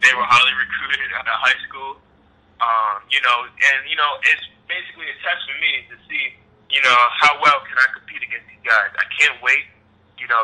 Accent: American